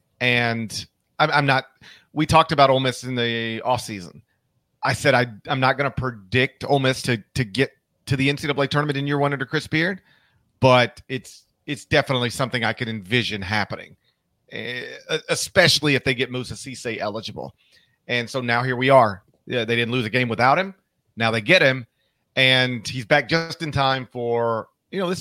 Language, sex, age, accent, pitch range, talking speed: English, male, 40-59, American, 120-140 Hz, 195 wpm